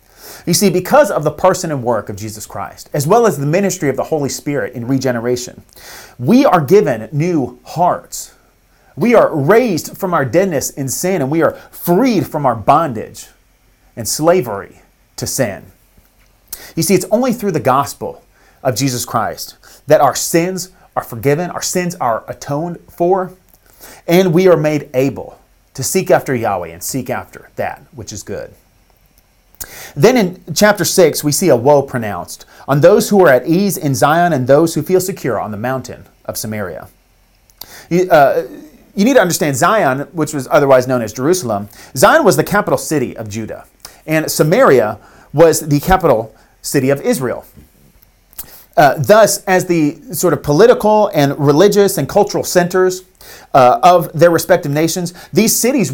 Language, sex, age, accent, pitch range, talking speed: English, male, 30-49, American, 130-185 Hz, 165 wpm